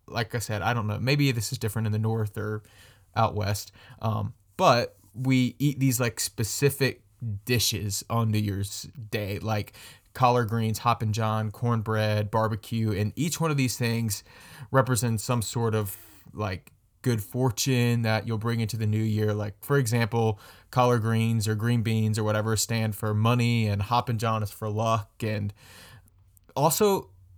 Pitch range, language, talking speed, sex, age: 110-130 Hz, English, 170 wpm, male, 20-39